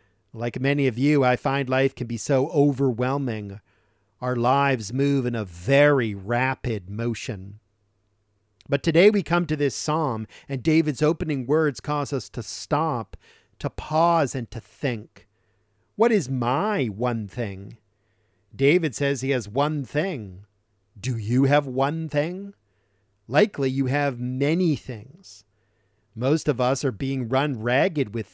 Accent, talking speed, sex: American, 145 wpm, male